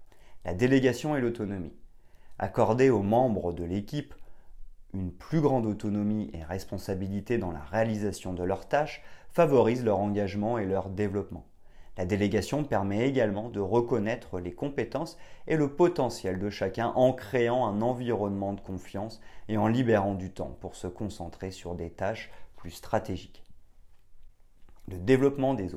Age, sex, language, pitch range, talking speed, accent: 30-49, male, French, 90-115 Hz, 145 wpm, French